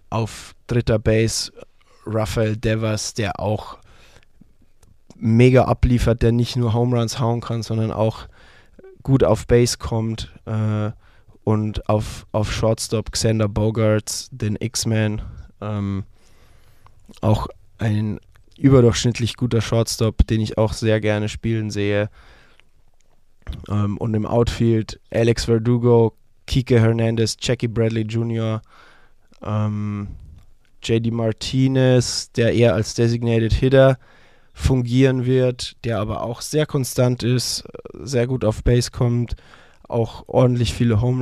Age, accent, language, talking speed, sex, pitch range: 20-39, German, German, 115 wpm, male, 105-120 Hz